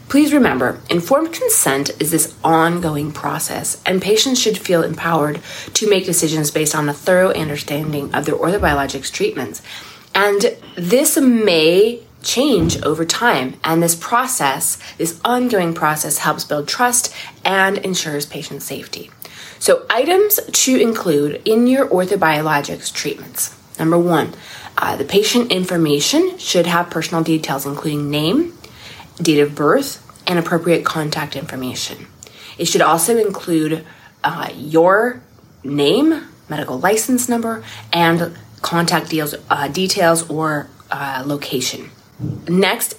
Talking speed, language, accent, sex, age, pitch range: 125 wpm, English, American, female, 30-49, 145-215 Hz